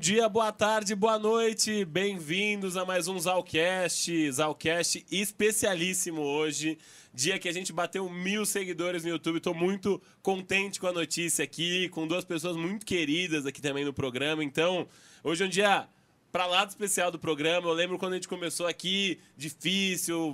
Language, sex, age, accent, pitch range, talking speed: Portuguese, male, 20-39, Brazilian, 160-195 Hz, 170 wpm